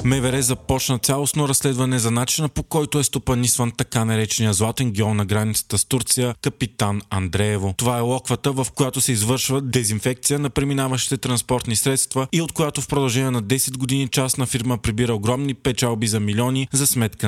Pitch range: 110-130 Hz